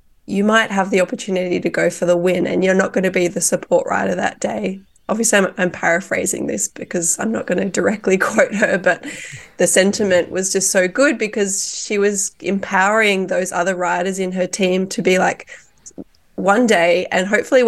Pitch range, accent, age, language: 180-205 Hz, Australian, 20-39, English